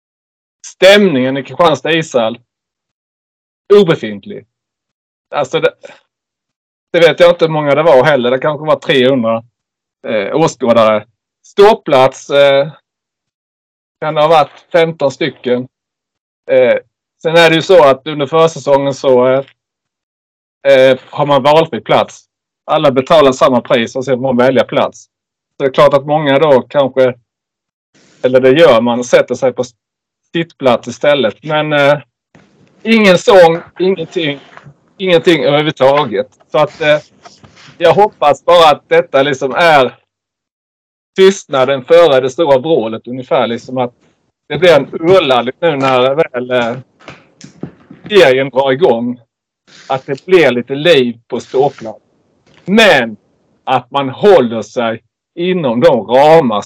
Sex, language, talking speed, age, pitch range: male, Swedish, 130 wpm, 30-49, 125-165 Hz